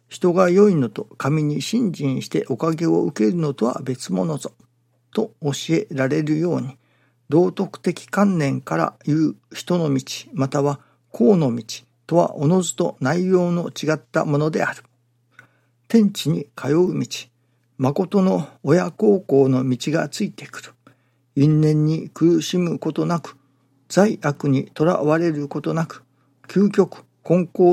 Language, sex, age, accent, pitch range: Japanese, male, 50-69, native, 120-170 Hz